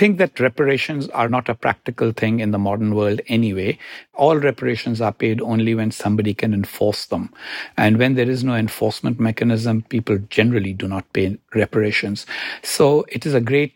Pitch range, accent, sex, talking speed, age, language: 110-125 Hz, Indian, male, 180 wpm, 60-79, English